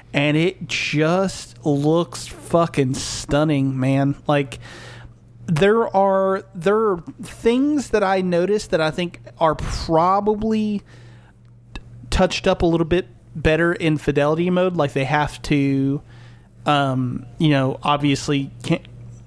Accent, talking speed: American, 120 wpm